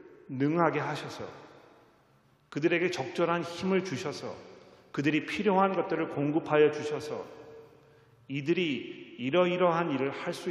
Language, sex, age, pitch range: Korean, male, 40-59, 140-205 Hz